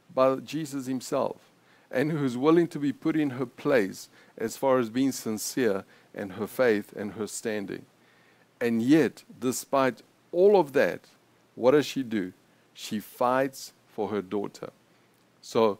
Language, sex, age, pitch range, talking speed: English, male, 60-79, 110-150 Hz, 150 wpm